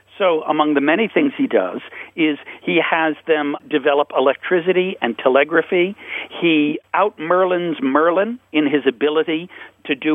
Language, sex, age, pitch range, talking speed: English, male, 60-79, 145-190 Hz, 135 wpm